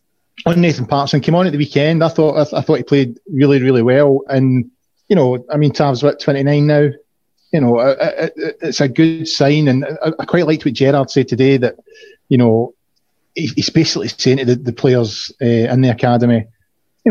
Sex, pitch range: male, 120-145 Hz